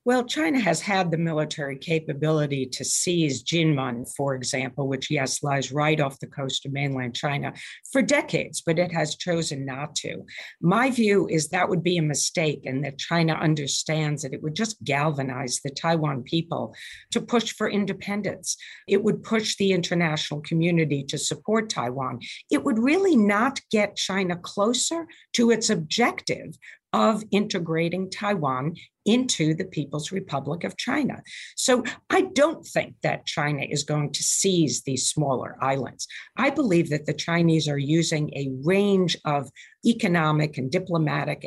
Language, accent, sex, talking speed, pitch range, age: English, American, female, 155 wpm, 145-205 Hz, 50-69